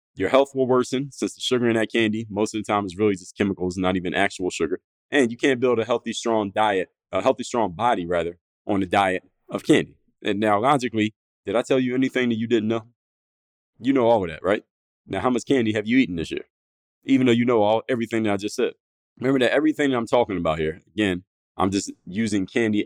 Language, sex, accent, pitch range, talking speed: English, male, American, 95-120 Hz, 235 wpm